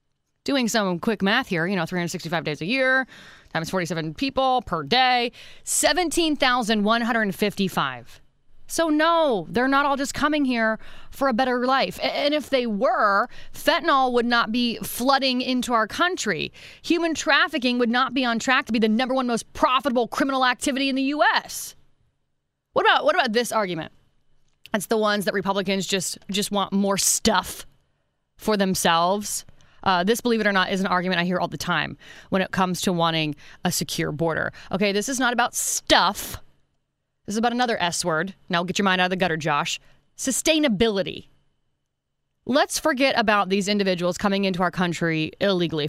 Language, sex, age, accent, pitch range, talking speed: English, female, 30-49, American, 185-260 Hz, 175 wpm